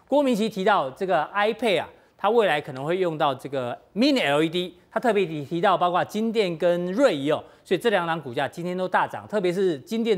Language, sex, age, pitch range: Chinese, male, 40-59, 170-215 Hz